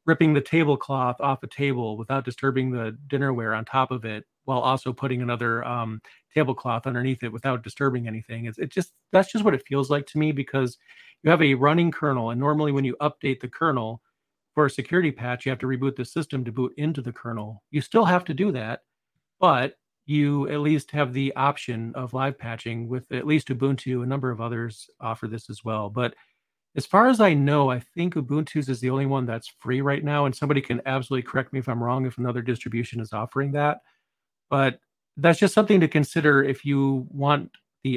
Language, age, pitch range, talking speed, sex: English, 40-59, 125-145 Hz, 210 wpm, male